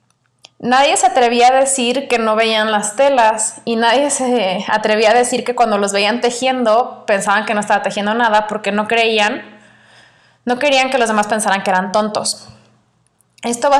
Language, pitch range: Spanish, 200-240 Hz